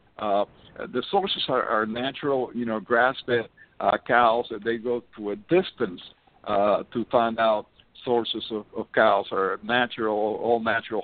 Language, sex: English, male